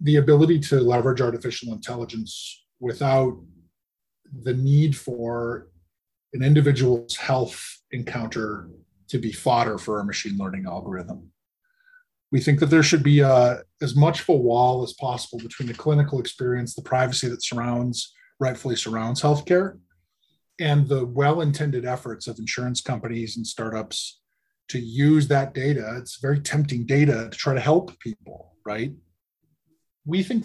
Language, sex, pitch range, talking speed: English, male, 115-145 Hz, 140 wpm